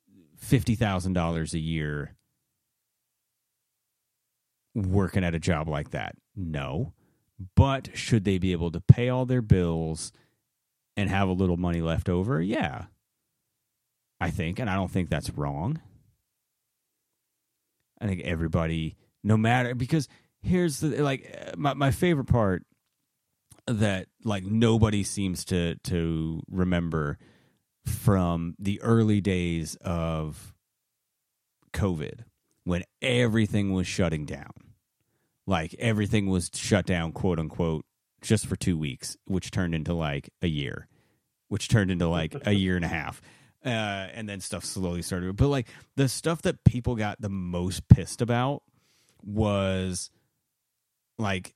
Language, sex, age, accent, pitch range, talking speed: English, male, 30-49, American, 85-115 Hz, 130 wpm